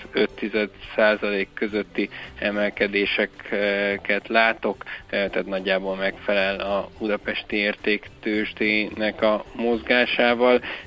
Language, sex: Hungarian, male